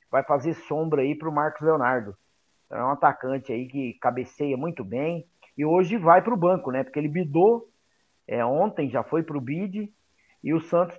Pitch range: 135-175 Hz